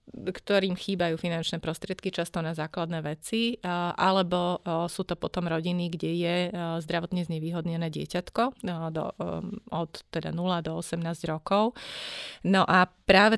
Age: 30-49